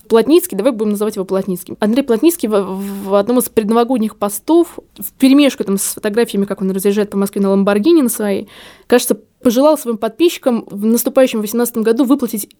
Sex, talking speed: female, 170 wpm